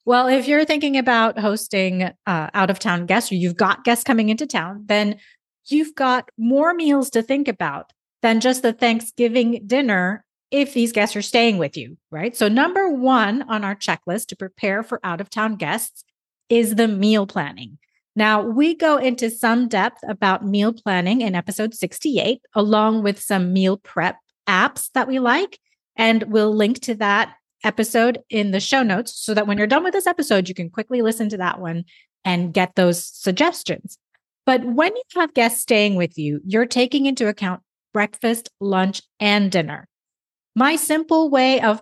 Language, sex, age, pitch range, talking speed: English, female, 30-49, 195-250 Hz, 175 wpm